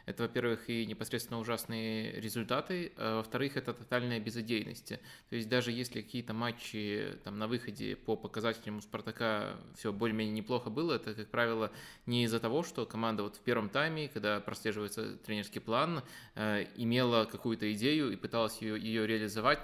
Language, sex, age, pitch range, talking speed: Russian, male, 20-39, 110-125 Hz, 160 wpm